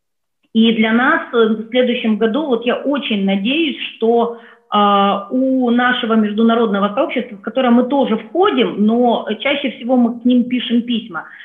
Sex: female